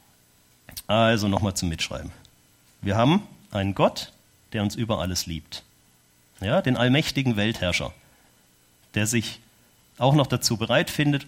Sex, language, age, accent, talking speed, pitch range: male, German, 40-59, German, 130 wpm, 100-145 Hz